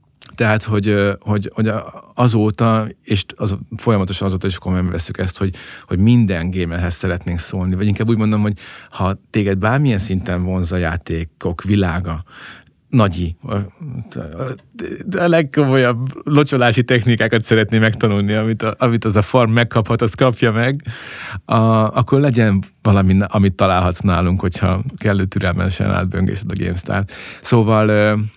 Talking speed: 135 wpm